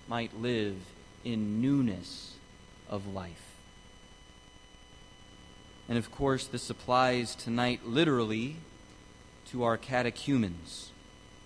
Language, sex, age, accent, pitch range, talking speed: English, male, 30-49, American, 95-130 Hz, 85 wpm